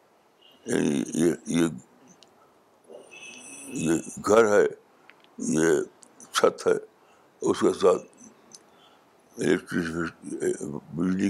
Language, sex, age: Urdu, male, 60-79